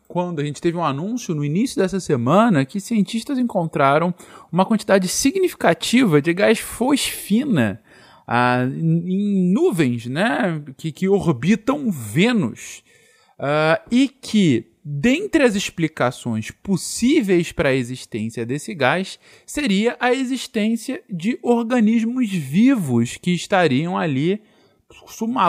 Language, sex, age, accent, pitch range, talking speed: Portuguese, male, 20-39, Brazilian, 135-220 Hz, 115 wpm